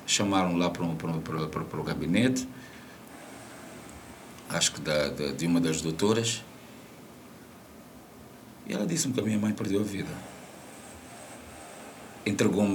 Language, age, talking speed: Portuguese, 50-69, 120 wpm